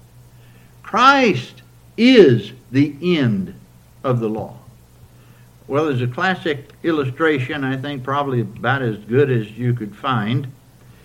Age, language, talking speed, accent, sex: 60-79, English, 120 wpm, American, male